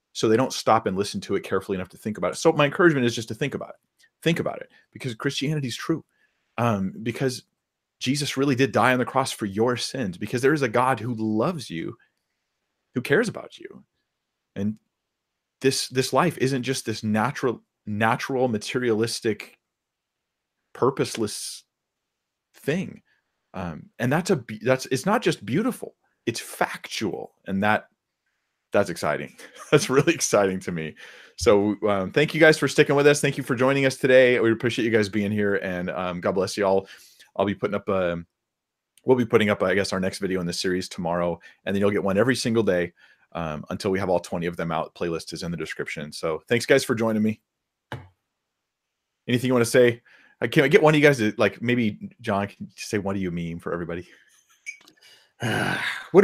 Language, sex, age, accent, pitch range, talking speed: English, male, 30-49, American, 100-135 Hz, 195 wpm